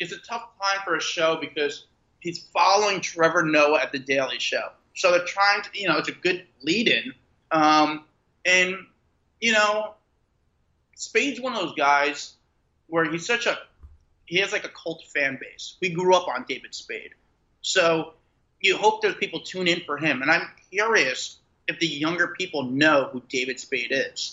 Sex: male